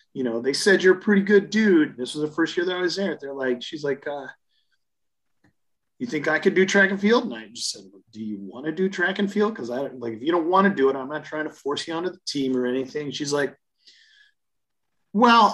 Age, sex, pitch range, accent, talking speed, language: 30-49, male, 140-195 Hz, American, 260 wpm, English